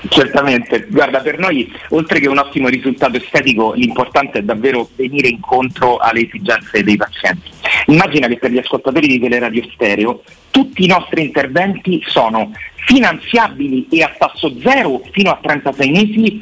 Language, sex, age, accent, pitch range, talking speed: Italian, male, 40-59, native, 135-210 Hz, 155 wpm